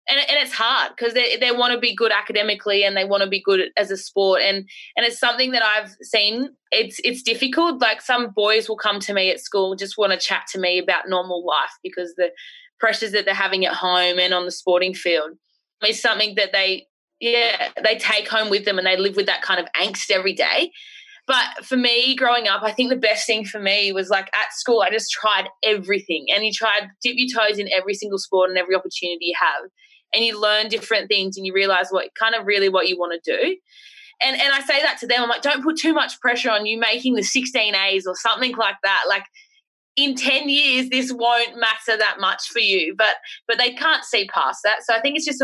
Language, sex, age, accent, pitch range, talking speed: English, female, 20-39, Australian, 190-245 Hz, 240 wpm